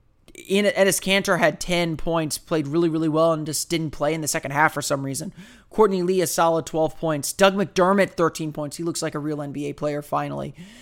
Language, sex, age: English, male, 30-49